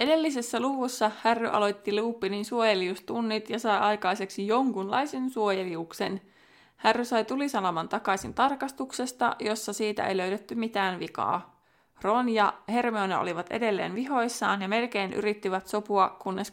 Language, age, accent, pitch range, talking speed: Finnish, 20-39, native, 195-230 Hz, 120 wpm